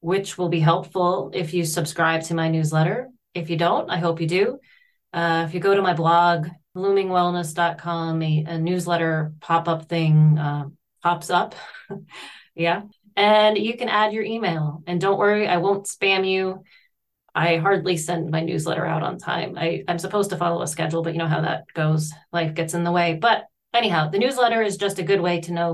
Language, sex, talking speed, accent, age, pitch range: English, female, 195 wpm, American, 30-49, 165-190 Hz